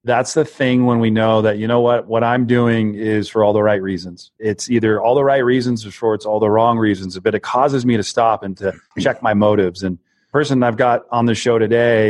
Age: 40-59